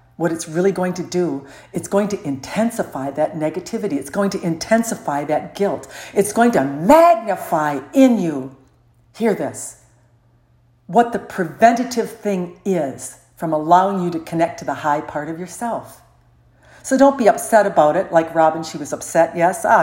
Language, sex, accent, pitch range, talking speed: English, female, American, 145-205 Hz, 165 wpm